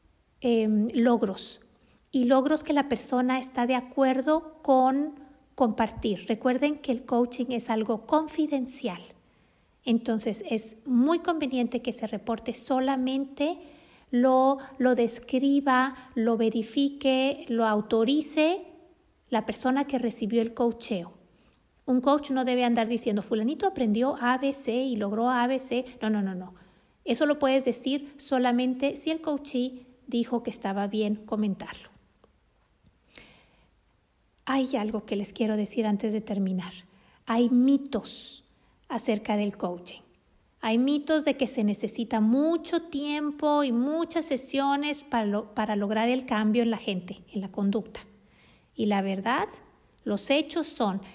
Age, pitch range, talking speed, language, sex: 50-69, 225-280 Hz, 135 wpm, Spanish, female